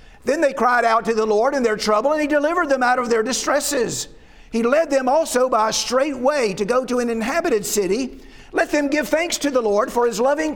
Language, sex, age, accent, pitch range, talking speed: English, male, 50-69, American, 215-275 Hz, 240 wpm